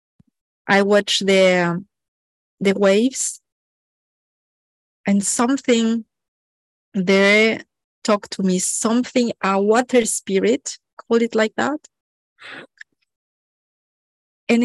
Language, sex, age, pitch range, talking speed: English, female, 30-49, 205-240 Hz, 80 wpm